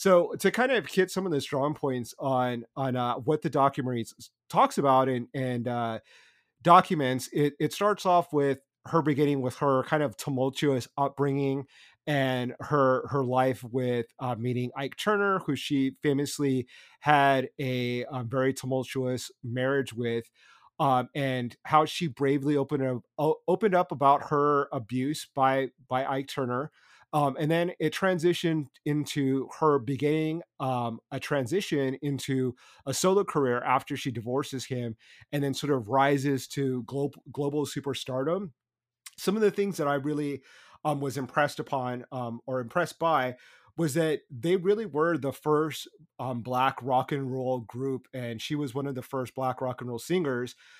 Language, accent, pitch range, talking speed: English, American, 130-150 Hz, 165 wpm